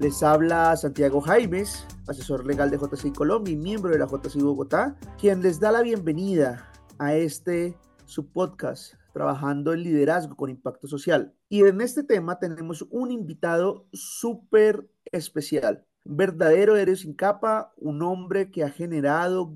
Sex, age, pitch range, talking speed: male, 30-49, 145-195 Hz, 150 wpm